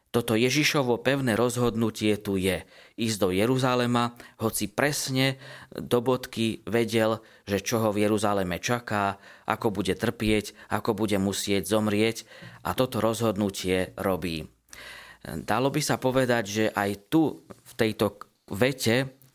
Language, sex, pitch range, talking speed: Slovak, male, 100-120 Hz, 125 wpm